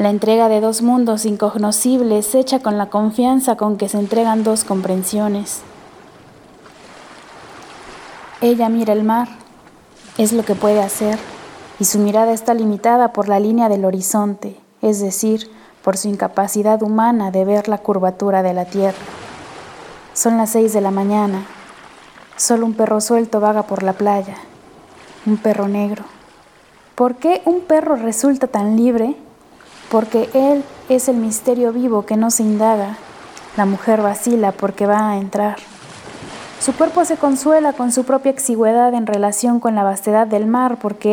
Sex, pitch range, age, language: female, 205-235 Hz, 20-39, Spanish